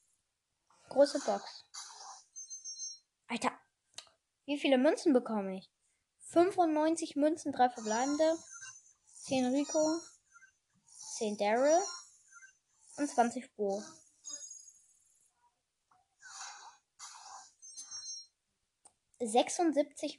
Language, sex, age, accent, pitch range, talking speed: German, female, 10-29, German, 245-320 Hz, 60 wpm